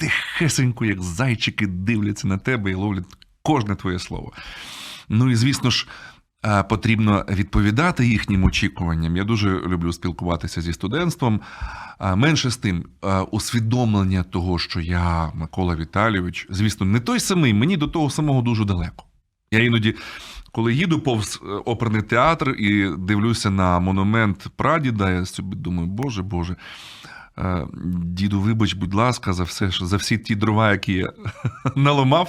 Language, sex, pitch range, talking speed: Ukrainian, male, 95-120 Hz, 140 wpm